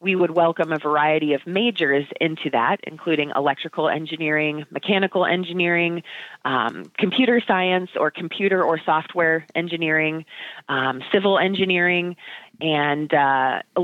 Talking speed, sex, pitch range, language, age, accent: 115 wpm, female, 150-185 Hz, English, 30-49, American